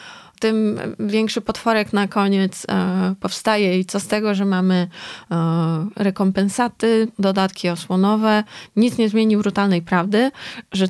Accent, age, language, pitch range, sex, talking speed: native, 20-39, Polish, 185-220 Hz, female, 115 wpm